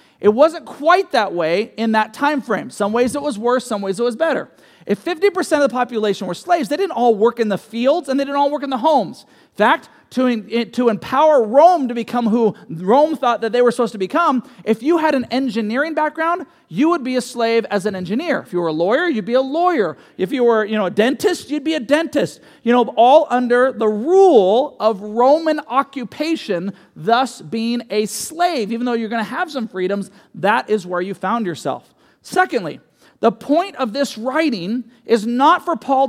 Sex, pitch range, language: male, 220-285 Hz, English